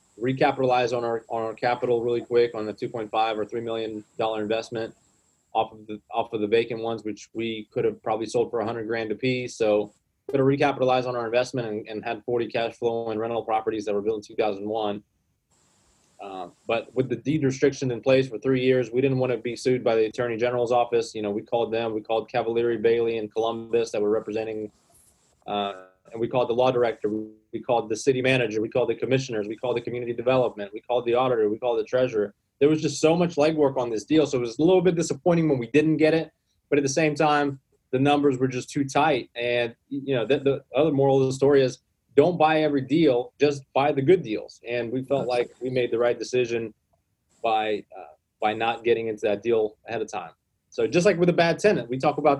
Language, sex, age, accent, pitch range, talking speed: English, male, 20-39, American, 110-140 Hz, 235 wpm